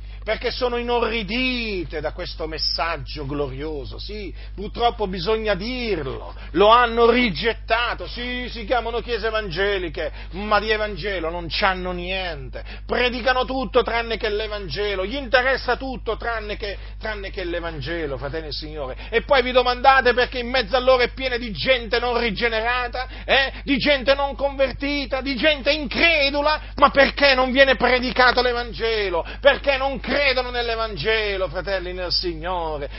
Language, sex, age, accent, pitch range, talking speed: Italian, male, 40-59, native, 185-255 Hz, 140 wpm